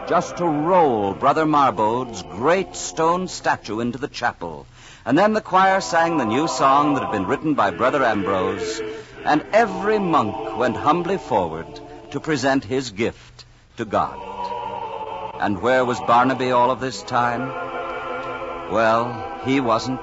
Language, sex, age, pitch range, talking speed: English, male, 60-79, 110-155 Hz, 145 wpm